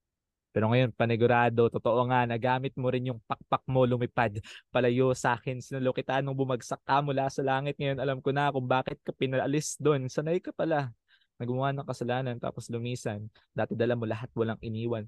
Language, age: Filipino, 20-39